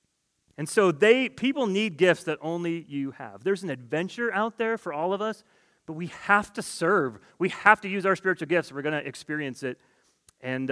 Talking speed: 205 wpm